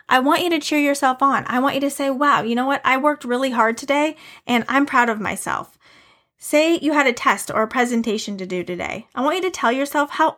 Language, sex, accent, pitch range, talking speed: English, female, American, 205-265 Hz, 255 wpm